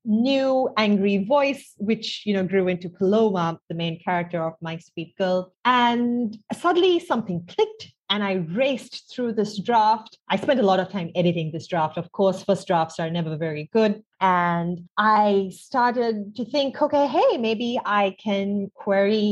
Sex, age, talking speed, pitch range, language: female, 30-49, 170 wpm, 175-225 Hz, English